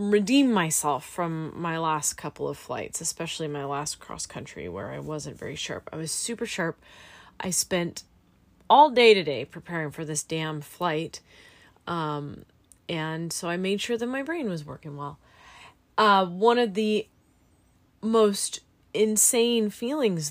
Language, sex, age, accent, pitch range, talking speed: English, female, 30-49, American, 165-220 Hz, 150 wpm